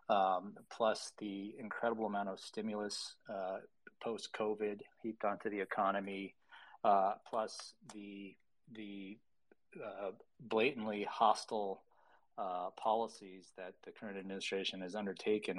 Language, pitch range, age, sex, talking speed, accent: English, 100-110 Hz, 40-59, male, 110 wpm, American